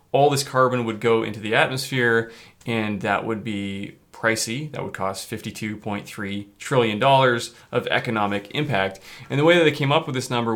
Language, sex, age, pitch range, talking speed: English, male, 20-39, 110-130 Hz, 180 wpm